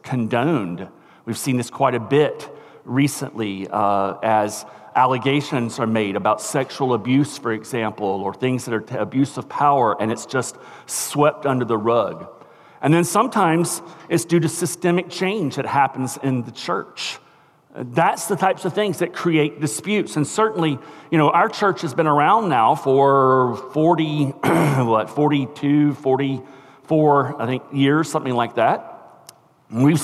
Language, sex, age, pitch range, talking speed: English, male, 40-59, 130-160 Hz, 150 wpm